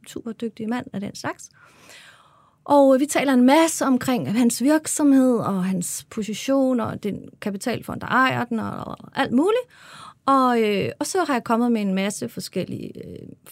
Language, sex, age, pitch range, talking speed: Danish, female, 30-49, 195-275 Hz, 165 wpm